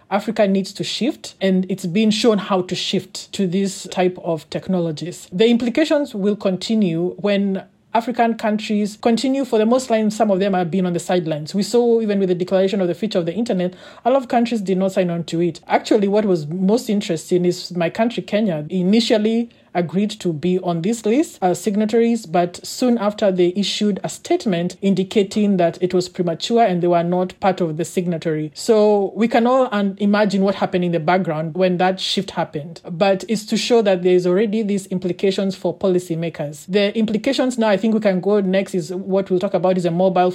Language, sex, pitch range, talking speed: English, male, 180-215 Hz, 210 wpm